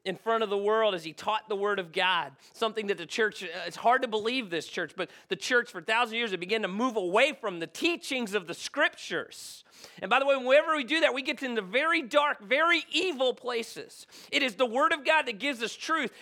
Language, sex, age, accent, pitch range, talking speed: English, male, 40-59, American, 210-285 Hz, 245 wpm